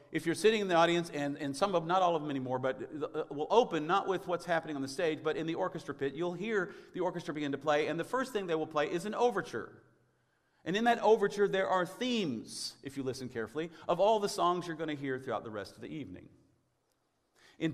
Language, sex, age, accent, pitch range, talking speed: English, male, 40-59, American, 145-205 Hz, 250 wpm